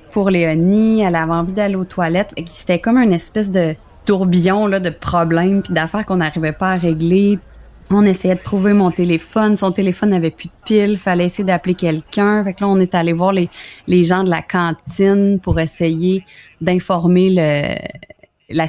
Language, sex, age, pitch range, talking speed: French, female, 20-39, 160-190 Hz, 190 wpm